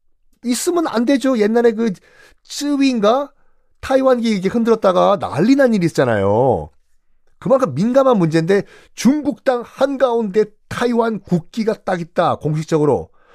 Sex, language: male, Korean